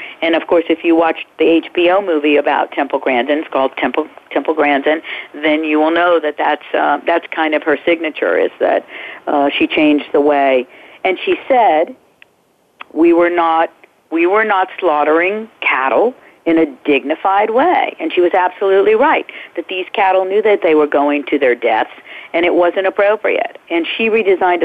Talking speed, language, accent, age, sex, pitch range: 180 wpm, English, American, 50-69, female, 150-200 Hz